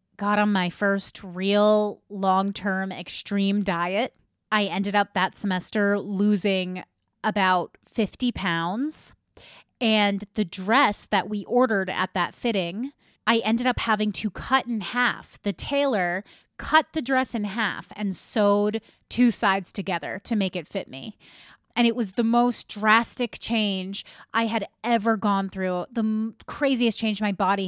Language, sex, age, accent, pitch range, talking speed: English, female, 30-49, American, 195-235 Hz, 145 wpm